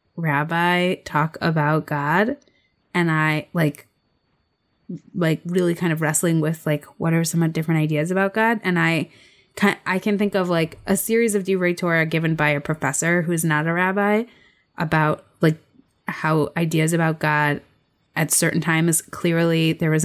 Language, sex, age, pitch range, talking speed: English, female, 20-39, 150-180 Hz, 160 wpm